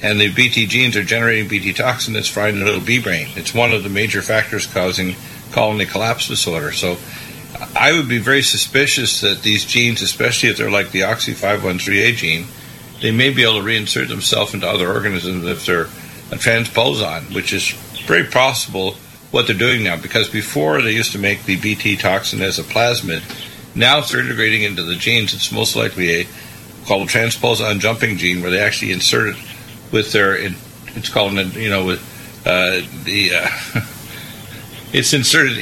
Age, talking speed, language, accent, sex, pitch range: 50-69, 180 wpm, English, American, male, 95-120 Hz